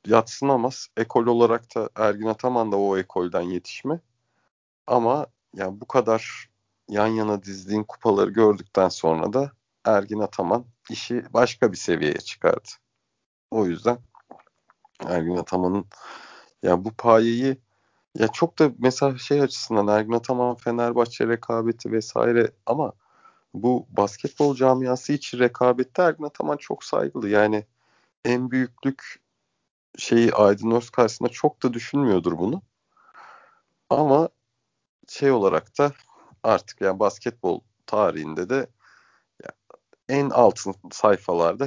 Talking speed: 115 wpm